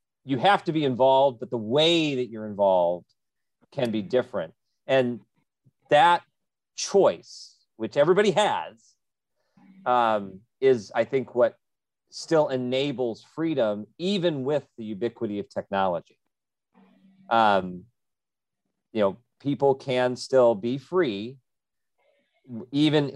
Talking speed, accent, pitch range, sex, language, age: 110 wpm, American, 110-145 Hz, male, English, 40-59